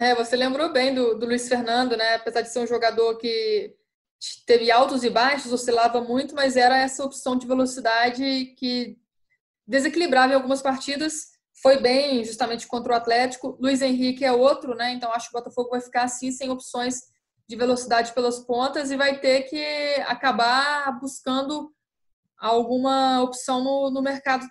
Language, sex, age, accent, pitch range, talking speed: Portuguese, female, 20-39, Brazilian, 235-270 Hz, 165 wpm